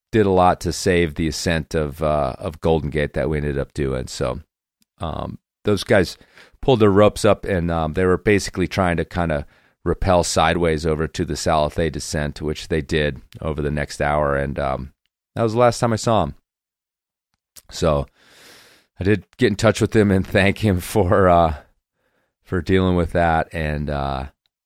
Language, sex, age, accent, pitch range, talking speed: English, male, 40-59, American, 75-95 Hz, 185 wpm